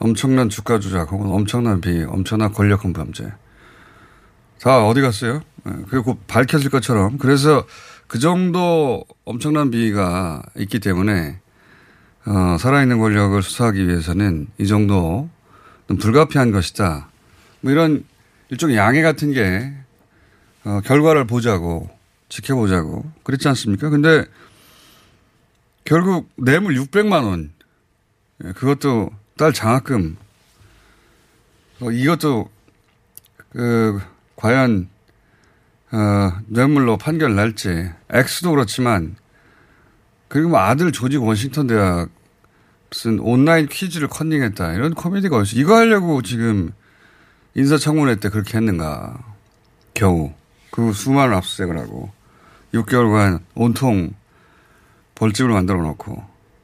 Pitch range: 100-135 Hz